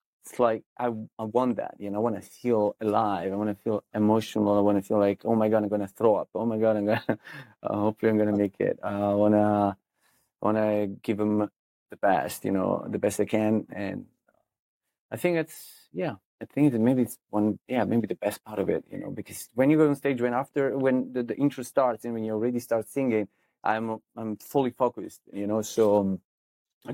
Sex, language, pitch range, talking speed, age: male, English, 100-115 Hz, 225 wpm, 20-39